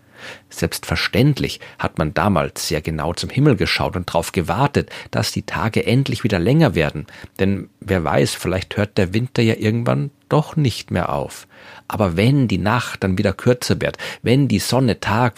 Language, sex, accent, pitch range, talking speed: German, male, German, 95-120 Hz, 170 wpm